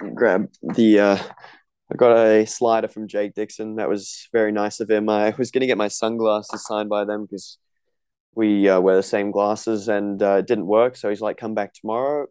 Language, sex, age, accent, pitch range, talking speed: English, male, 20-39, Australian, 100-110 Hz, 210 wpm